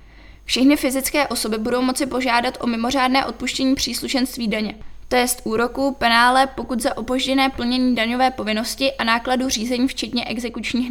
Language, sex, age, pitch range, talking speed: Czech, female, 20-39, 240-270 Hz, 145 wpm